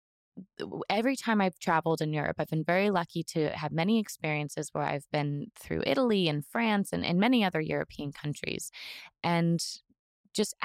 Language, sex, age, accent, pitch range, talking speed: English, female, 20-39, American, 170-220 Hz, 165 wpm